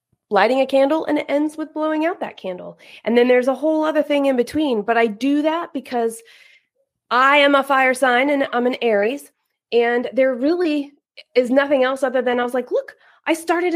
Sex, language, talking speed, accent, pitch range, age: female, English, 210 wpm, American, 230-300 Hz, 30-49